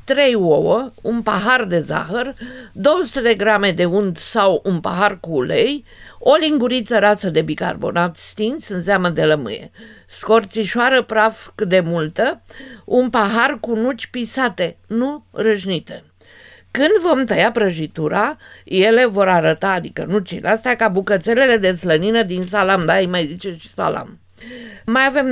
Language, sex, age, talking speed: Romanian, female, 50-69, 145 wpm